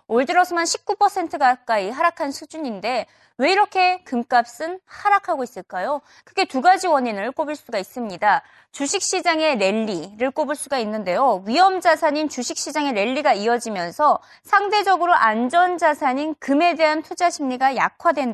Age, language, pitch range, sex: 20-39, Korean, 240-355 Hz, female